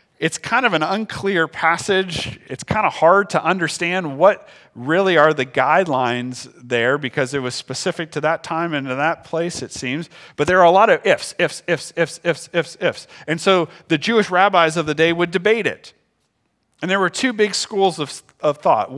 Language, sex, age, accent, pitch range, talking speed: English, male, 40-59, American, 145-185 Hz, 200 wpm